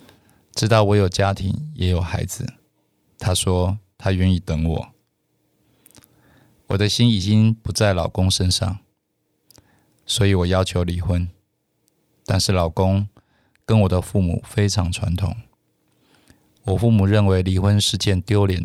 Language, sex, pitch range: Chinese, male, 90-105 Hz